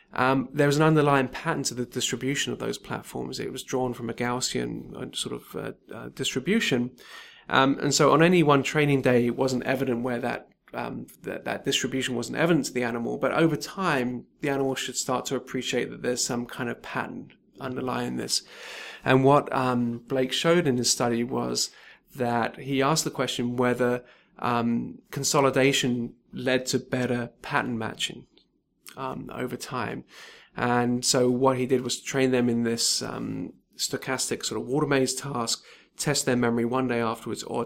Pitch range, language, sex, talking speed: 120-135 Hz, English, male, 175 wpm